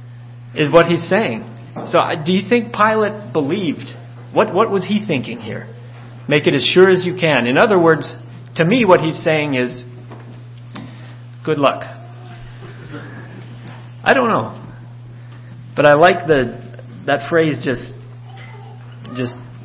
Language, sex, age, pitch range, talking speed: English, male, 40-59, 120-145 Hz, 135 wpm